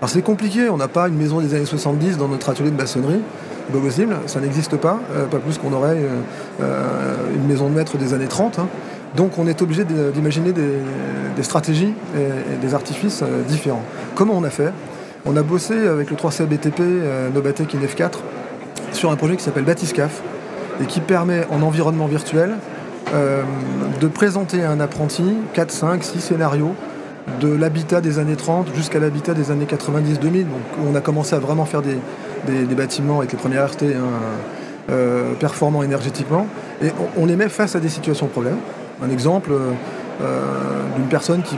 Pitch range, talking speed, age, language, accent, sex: 135-165 Hz, 185 wpm, 30-49, French, French, male